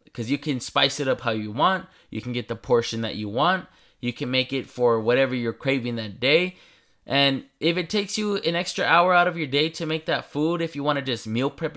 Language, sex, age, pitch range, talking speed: English, male, 20-39, 125-160 Hz, 255 wpm